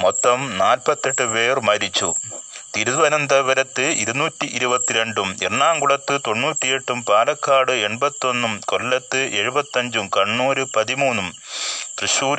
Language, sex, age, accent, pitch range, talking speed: Malayalam, male, 30-49, native, 110-135 Hz, 75 wpm